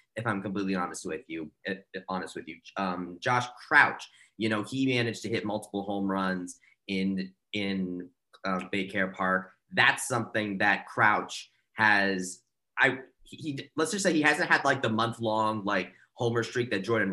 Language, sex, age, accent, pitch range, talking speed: English, male, 20-39, American, 95-120 Hz, 175 wpm